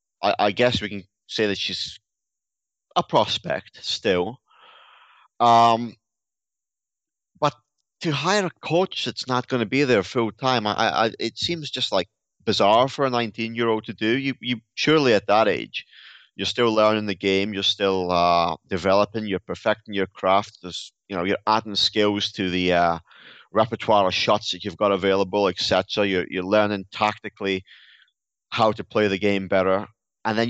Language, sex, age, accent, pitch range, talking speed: English, male, 30-49, British, 100-125 Hz, 160 wpm